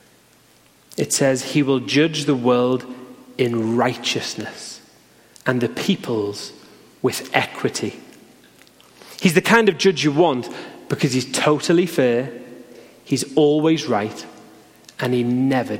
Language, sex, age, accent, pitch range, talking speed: English, male, 30-49, British, 130-165 Hz, 120 wpm